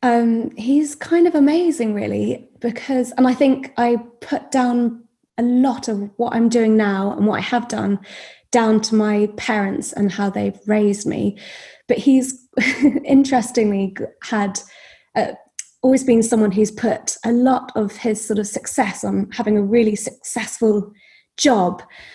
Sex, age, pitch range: female, 20-39, 200-240 Hz